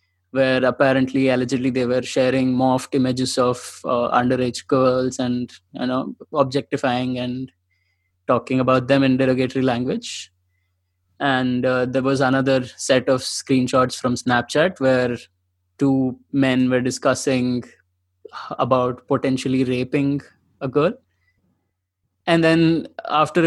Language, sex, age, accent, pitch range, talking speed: English, male, 20-39, Indian, 125-140 Hz, 120 wpm